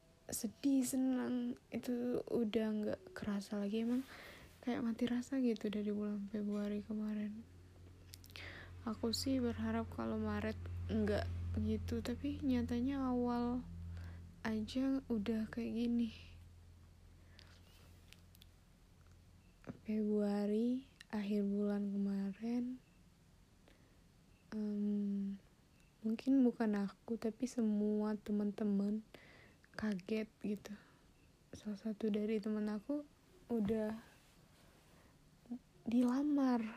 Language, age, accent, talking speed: Indonesian, 20-39, native, 80 wpm